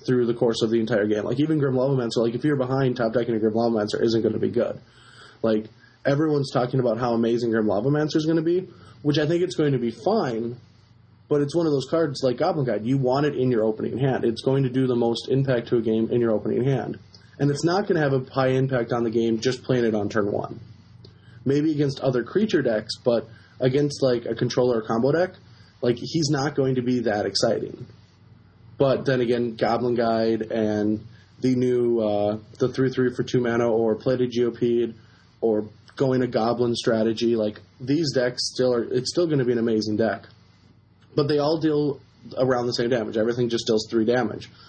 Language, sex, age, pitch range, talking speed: English, male, 20-39, 110-130 Hz, 225 wpm